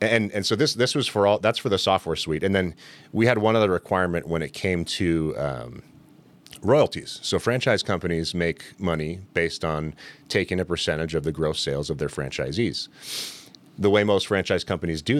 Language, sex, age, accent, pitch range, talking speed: English, male, 30-49, American, 80-115 Hz, 195 wpm